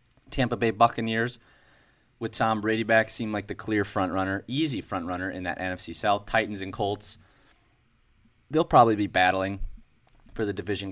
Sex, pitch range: male, 95-115 Hz